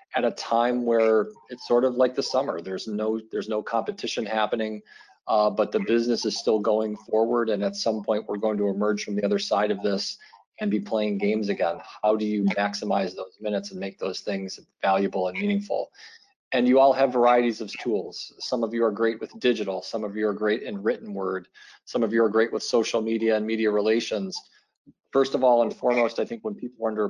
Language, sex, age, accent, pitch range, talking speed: English, male, 40-59, American, 105-120 Hz, 220 wpm